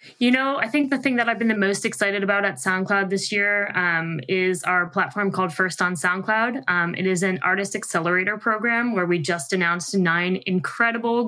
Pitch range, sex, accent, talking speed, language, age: 175-210 Hz, female, American, 200 wpm, English, 20-39